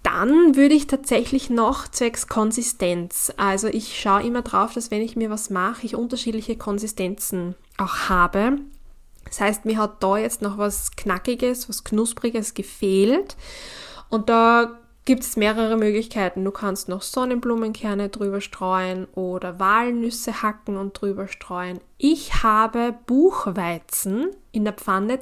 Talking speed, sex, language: 140 wpm, female, German